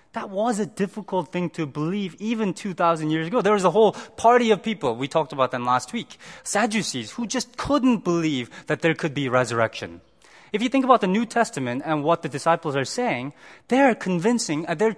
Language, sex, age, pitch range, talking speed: English, male, 20-39, 140-215 Hz, 205 wpm